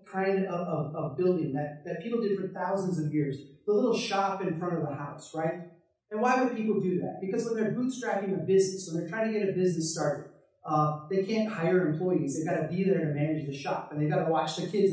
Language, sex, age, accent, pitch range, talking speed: English, male, 30-49, American, 175-220 Hz, 255 wpm